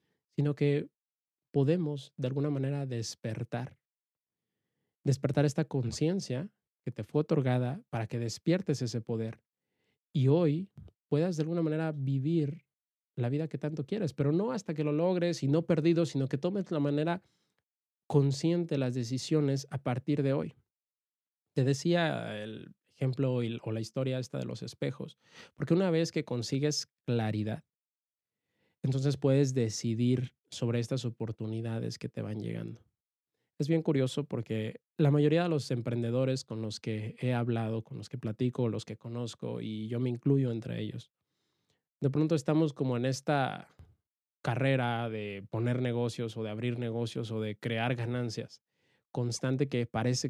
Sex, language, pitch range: male, Spanish, 115-150 Hz